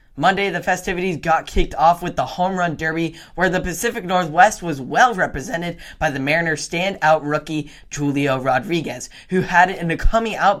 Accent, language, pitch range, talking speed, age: American, English, 150-190 Hz, 175 wpm, 10-29